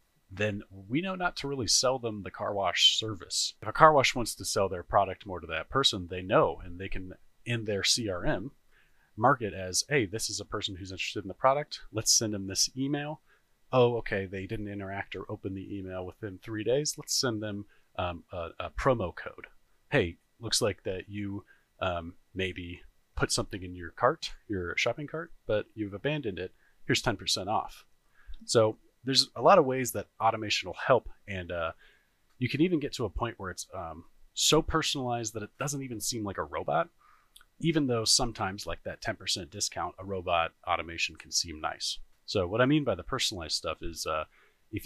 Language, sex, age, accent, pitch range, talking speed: English, male, 30-49, American, 95-125 Hz, 200 wpm